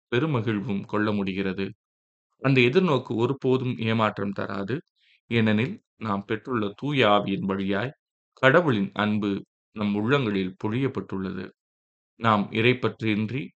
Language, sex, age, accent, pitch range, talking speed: Tamil, male, 20-39, native, 100-115 Hz, 95 wpm